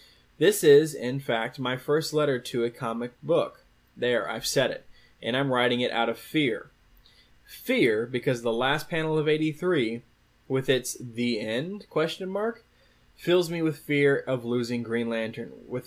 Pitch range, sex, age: 120-165 Hz, male, 20-39